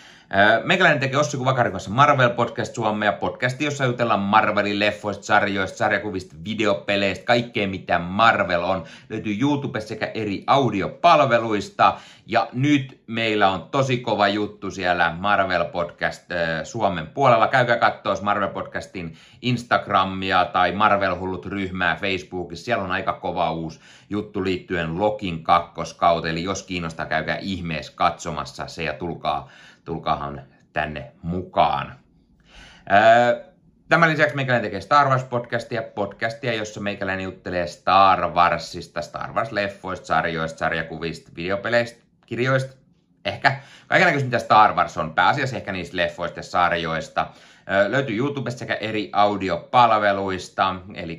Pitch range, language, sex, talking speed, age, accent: 90-120 Hz, Finnish, male, 120 wpm, 30-49, native